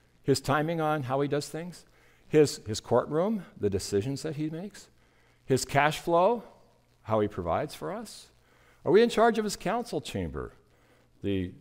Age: 60-79